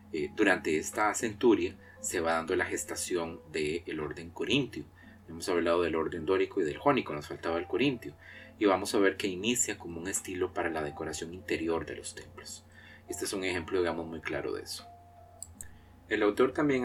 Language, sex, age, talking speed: Spanish, male, 30-49, 185 wpm